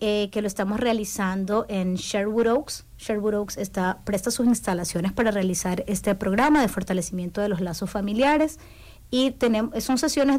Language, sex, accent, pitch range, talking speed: English, female, American, 185-230 Hz, 160 wpm